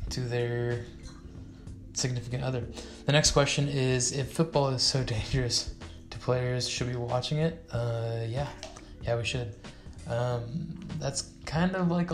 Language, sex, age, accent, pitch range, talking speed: English, male, 20-39, American, 115-140 Hz, 145 wpm